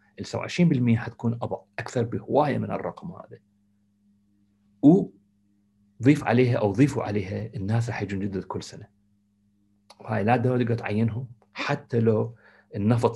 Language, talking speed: Arabic, 120 wpm